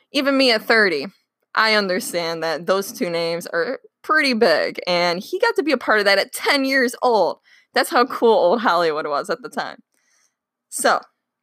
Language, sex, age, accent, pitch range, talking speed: English, female, 20-39, American, 180-260 Hz, 190 wpm